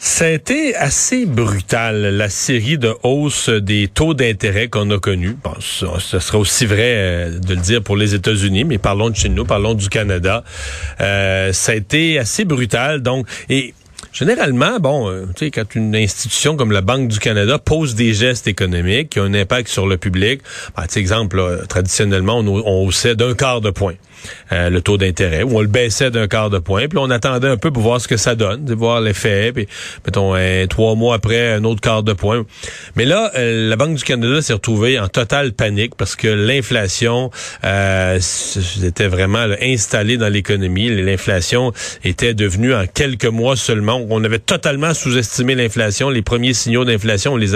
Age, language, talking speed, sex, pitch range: 40-59, French, 195 wpm, male, 100-125 Hz